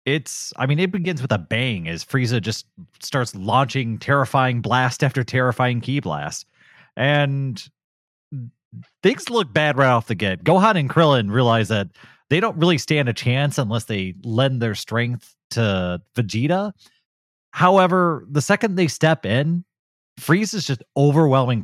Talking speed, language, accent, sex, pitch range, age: 150 wpm, English, American, male, 110-150 Hz, 30-49